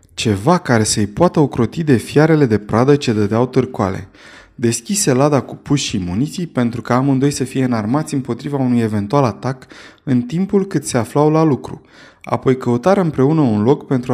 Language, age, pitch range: Romanian, 20-39, 120-155 Hz